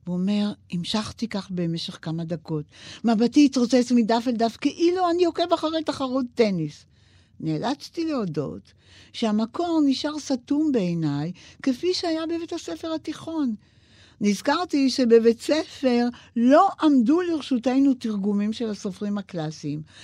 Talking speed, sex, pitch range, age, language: 115 wpm, female, 165-255 Hz, 60-79, Hebrew